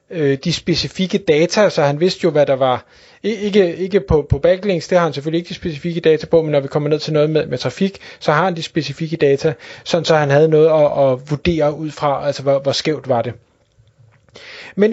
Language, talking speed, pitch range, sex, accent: Danish, 230 wpm, 150-190 Hz, male, native